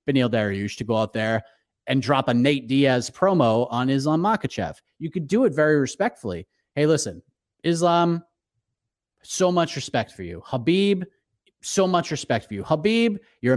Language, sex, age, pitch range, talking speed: English, male, 30-49, 125-190 Hz, 165 wpm